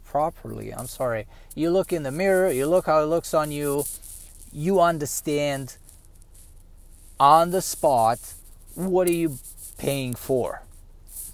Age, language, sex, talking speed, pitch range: 30-49, English, male, 130 wpm, 105-165 Hz